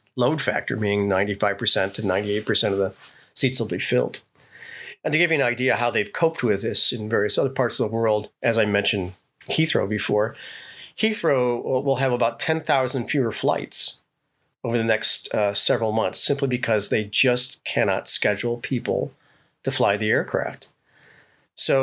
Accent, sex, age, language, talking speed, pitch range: American, male, 40-59, English, 165 wpm, 105-130 Hz